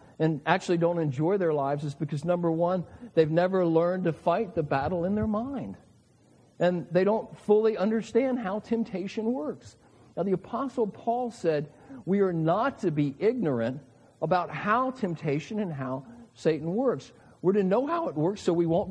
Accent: American